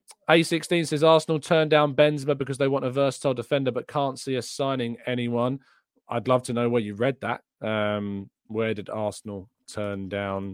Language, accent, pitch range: English, British, 100-135 Hz